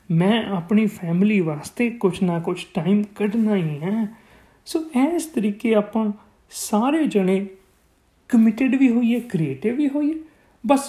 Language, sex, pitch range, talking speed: Punjabi, male, 175-255 Hz, 140 wpm